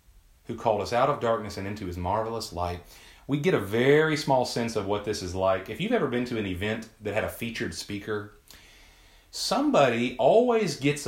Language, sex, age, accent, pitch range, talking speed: English, male, 30-49, American, 90-145 Hz, 200 wpm